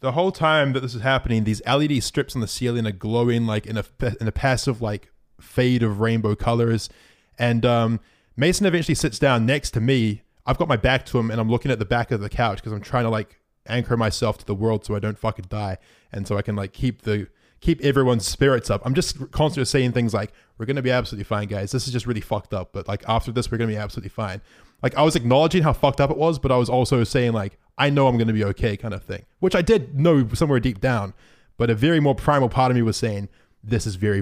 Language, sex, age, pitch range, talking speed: English, male, 20-39, 110-145 Hz, 260 wpm